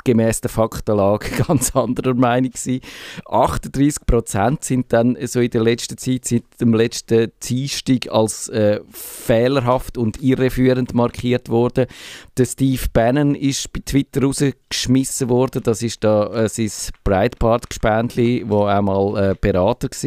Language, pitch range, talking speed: German, 110-125 Hz, 145 wpm